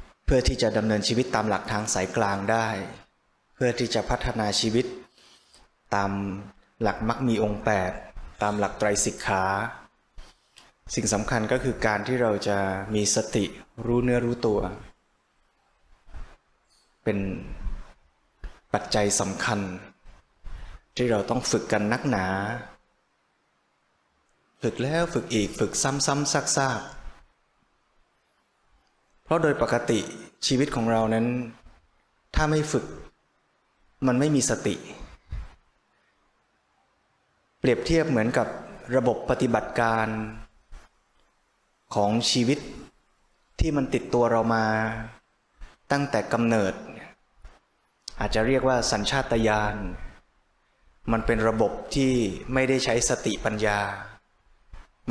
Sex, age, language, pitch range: male, 20-39, Thai, 105-125 Hz